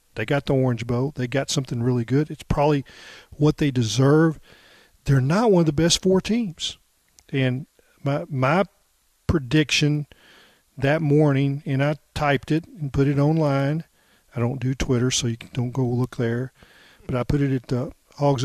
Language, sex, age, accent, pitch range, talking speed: English, male, 50-69, American, 125-150 Hz, 175 wpm